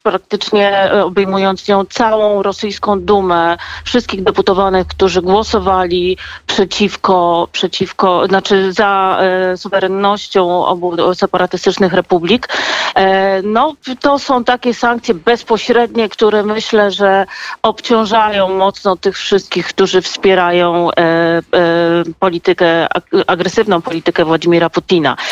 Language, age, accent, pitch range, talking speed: Polish, 40-59, native, 180-210 Hz, 90 wpm